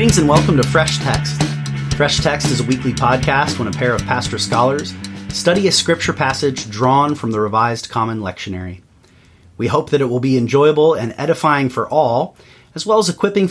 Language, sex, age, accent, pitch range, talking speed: English, male, 30-49, American, 110-140 Hz, 185 wpm